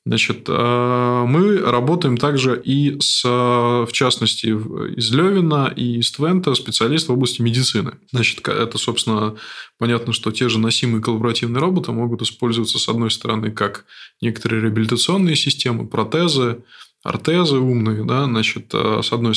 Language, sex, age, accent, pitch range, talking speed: Russian, male, 20-39, native, 115-135 Hz, 135 wpm